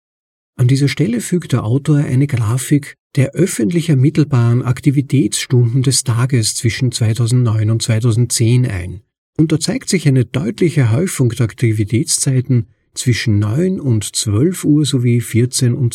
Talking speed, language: 135 wpm, German